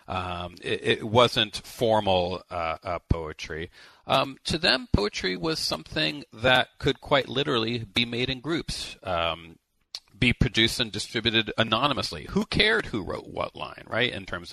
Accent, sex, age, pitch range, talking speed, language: American, male, 40-59, 95-120 Hz, 155 wpm, English